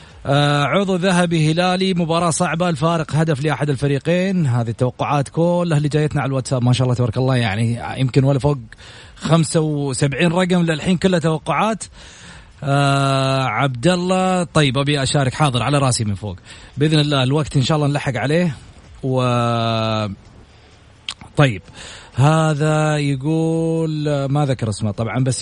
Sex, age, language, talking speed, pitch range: male, 30-49, Arabic, 140 wpm, 130-165 Hz